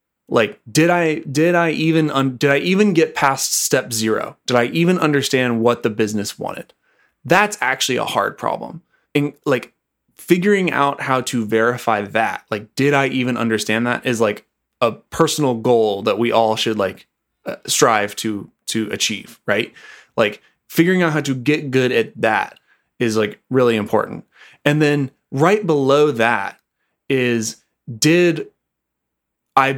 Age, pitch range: 20-39, 115-155 Hz